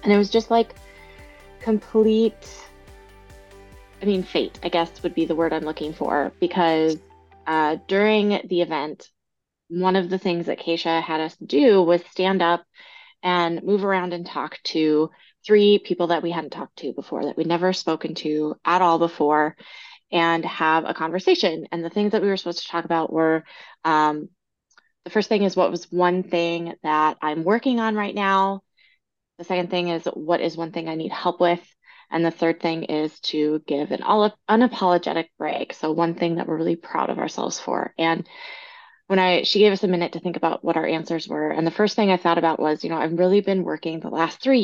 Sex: female